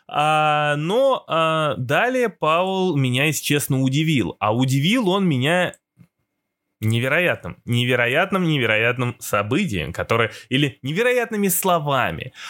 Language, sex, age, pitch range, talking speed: Russian, male, 20-39, 125-185 Hz, 90 wpm